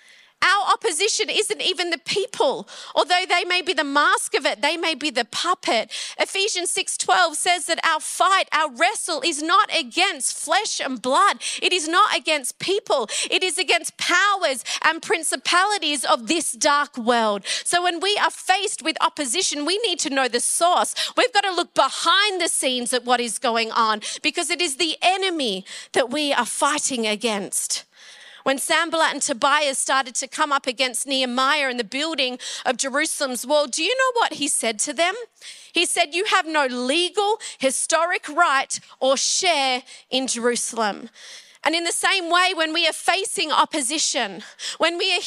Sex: female